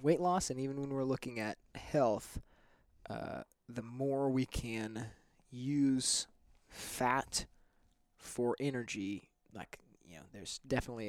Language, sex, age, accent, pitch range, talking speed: English, male, 20-39, American, 105-135 Hz, 125 wpm